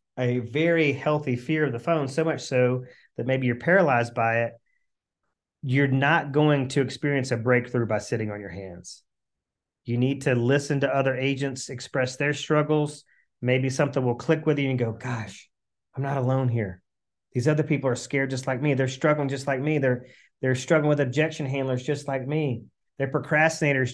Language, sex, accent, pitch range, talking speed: English, male, American, 125-155 Hz, 190 wpm